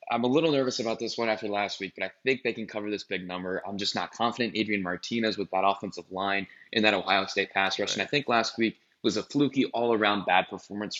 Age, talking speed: 20-39, 250 wpm